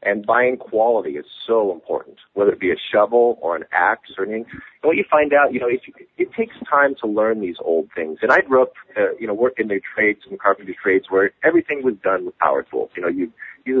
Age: 50-69